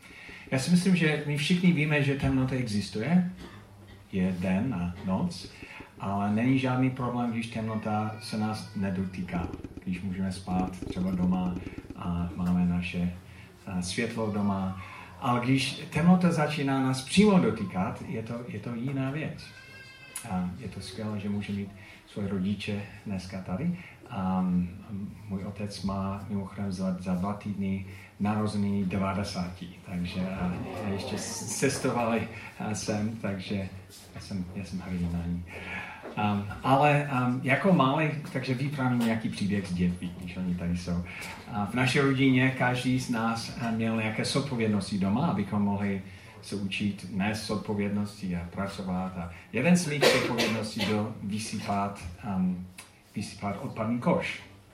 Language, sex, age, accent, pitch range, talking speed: Czech, male, 40-59, native, 95-120 Hz, 135 wpm